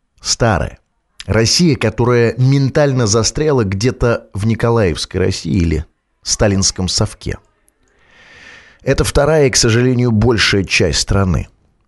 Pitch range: 105-150 Hz